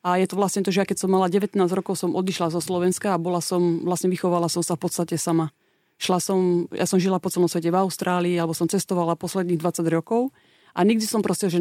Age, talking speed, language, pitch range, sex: 30-49, 245 wpm, Slovak, 170-190 Hz, female